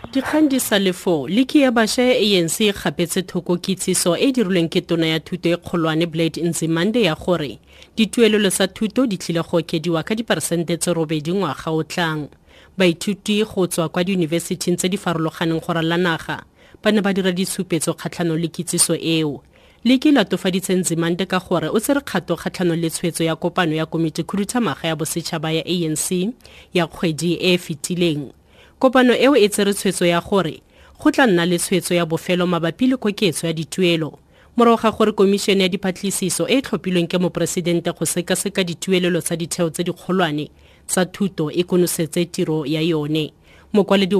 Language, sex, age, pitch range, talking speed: English, female, 30-49, 165-200 Hz, 120 wpm